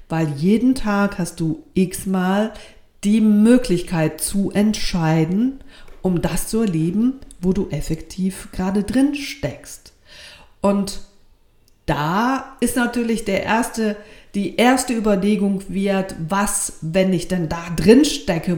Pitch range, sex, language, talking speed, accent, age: 165-225 Hz, female, German, 115 wpm, German, 50-69